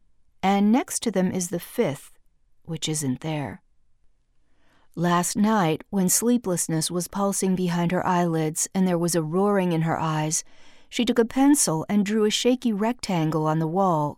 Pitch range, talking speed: 155-215 Hz, 165 wpm